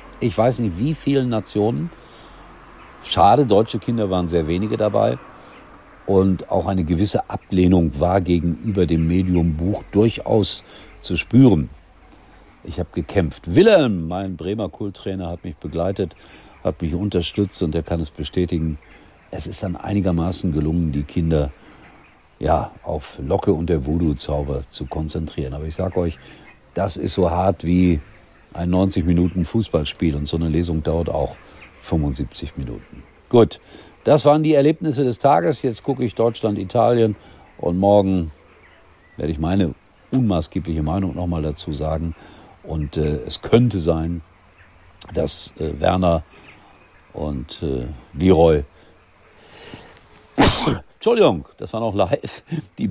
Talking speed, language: 135 wpm, German